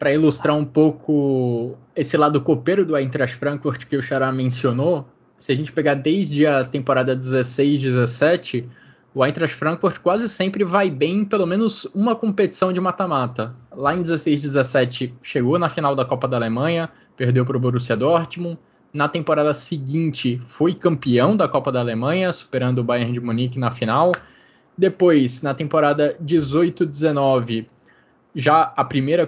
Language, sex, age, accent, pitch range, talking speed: Portuguese, male, 20-39, Brazilian, 135-180 Hz, 150 wpm